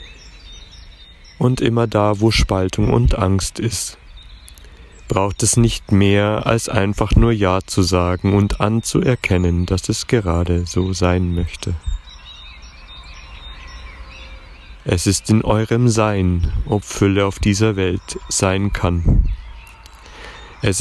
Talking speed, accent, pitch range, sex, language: 110 wpm, German, 85-105 Hz, male, German